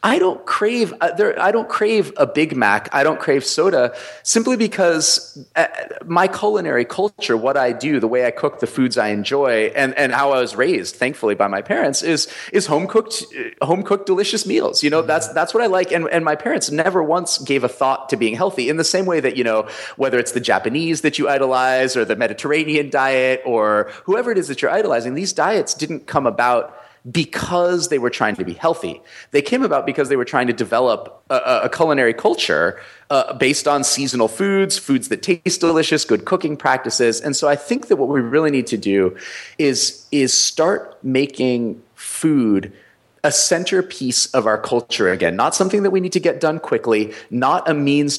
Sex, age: male, 30-49